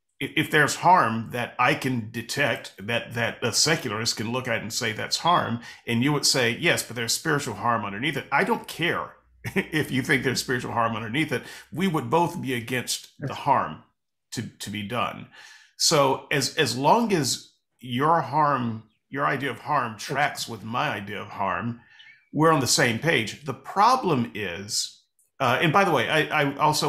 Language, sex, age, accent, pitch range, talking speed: English, male, 40-59, American, 115-145 Hz, 185 wpm